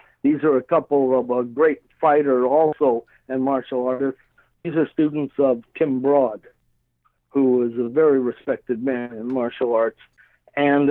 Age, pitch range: 60-79, 130-155 Hz